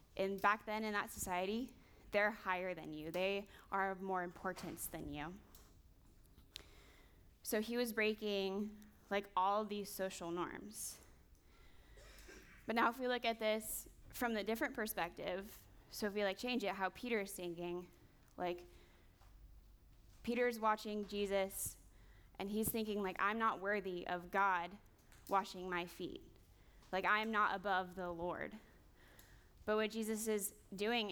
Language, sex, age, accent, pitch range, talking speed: English, female, 20-39, American, 170-215 Hz, 145 wpm